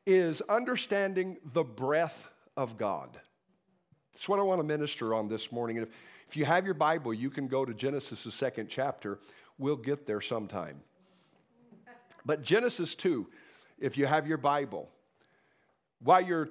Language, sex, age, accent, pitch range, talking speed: English, male, 50-69, American, 150-200 Hz, 155 wpm